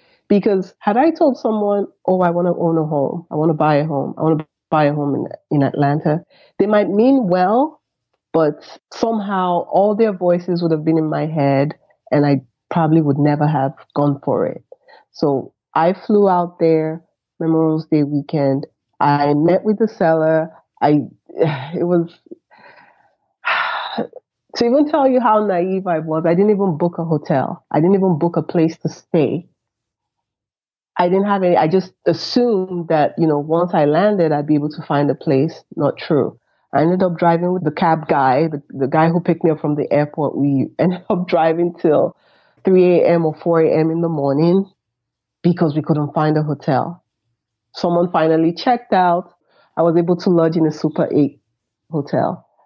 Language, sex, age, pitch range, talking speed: English, female, 30-49, 150-180 Hz, 185 wpm